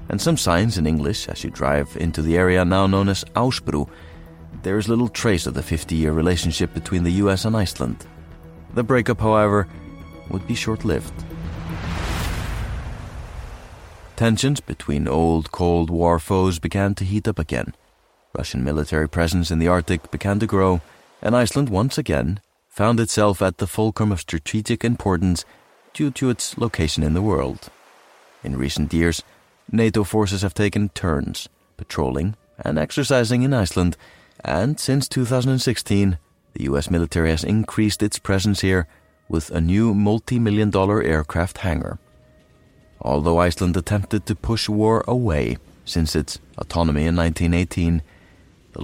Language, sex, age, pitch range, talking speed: English, male, 30-49, 80-110 Hz, 145 wpm